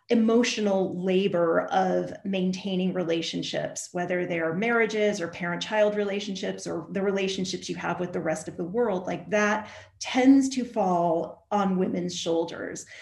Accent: American